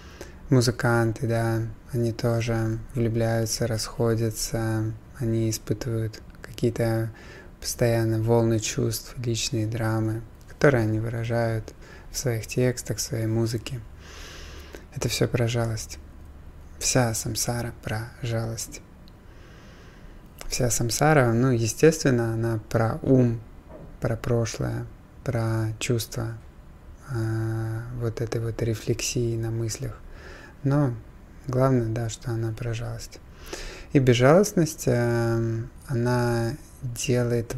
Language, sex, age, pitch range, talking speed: Russian, male, 20-39, 110-120 Hz, 95 wpm